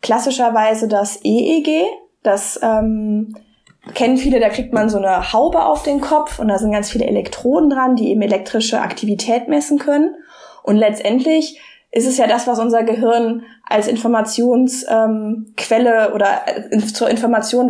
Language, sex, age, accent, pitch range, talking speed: German, female, 20-39, German, 215-260 Hz, 155 wpm